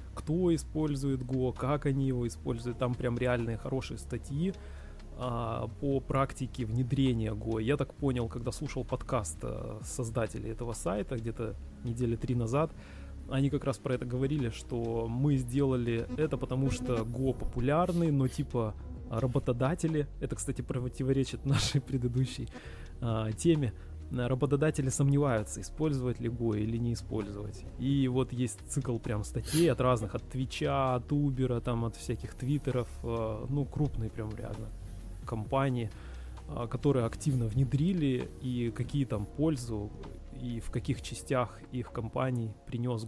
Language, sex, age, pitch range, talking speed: Russian, male, 20-39, 115-135 Hz, 130 wpm